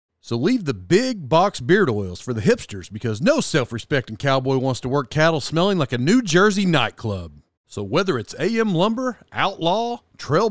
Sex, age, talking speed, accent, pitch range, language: male, 40-59, 175 wpm, American, 105-170 Hz, English